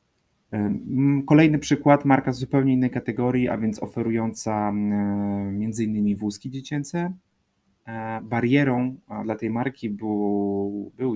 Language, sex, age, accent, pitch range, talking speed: Polish, male, 30-49, native, 100-125 Hz, 110 wpm